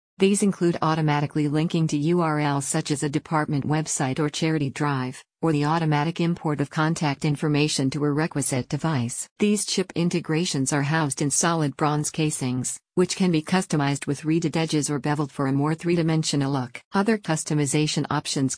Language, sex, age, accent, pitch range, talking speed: English, female, 50-69, American, 145-165 Hz, 165 wpm